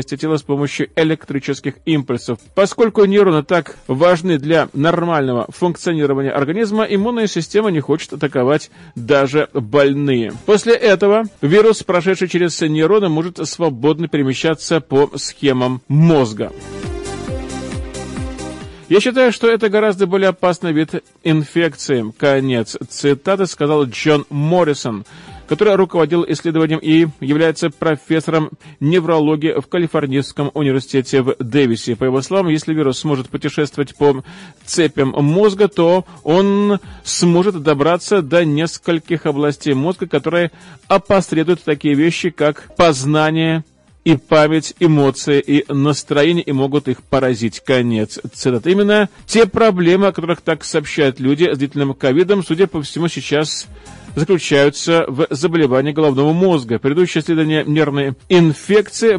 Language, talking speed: Russian, 120 wpm